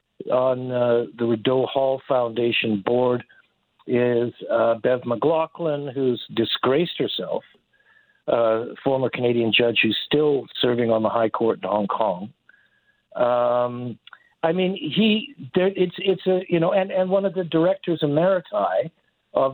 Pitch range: 120-180 Hz